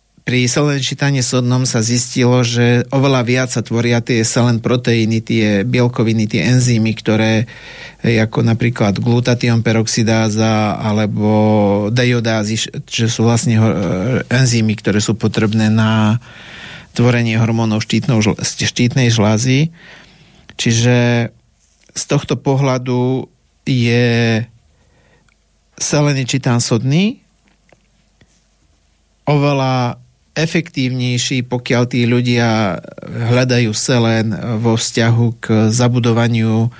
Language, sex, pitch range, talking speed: Slovak, male, 110-125 Hz, 90 wpm